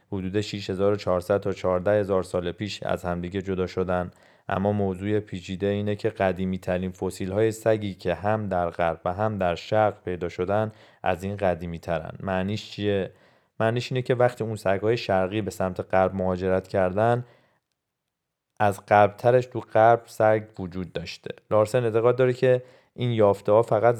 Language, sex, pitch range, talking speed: Persian, male, 95-110 Hz, 160 wpm